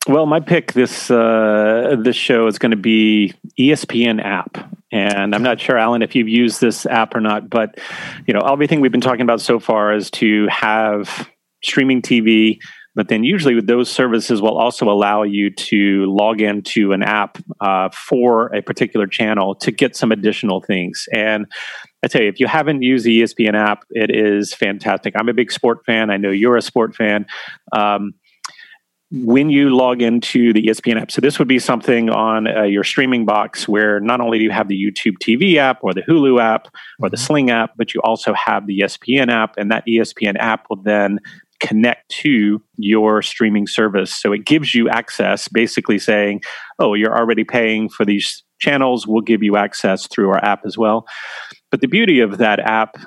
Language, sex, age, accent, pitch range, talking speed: English, male, 30-49, American, 105-120 Hz, 195 wpm